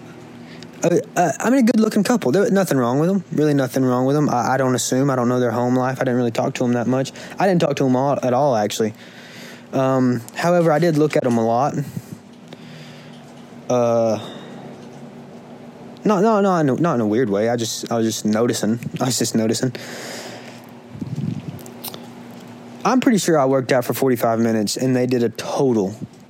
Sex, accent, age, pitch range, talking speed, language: male, American, 20-39, 120-155 Hz, 195 wpm, English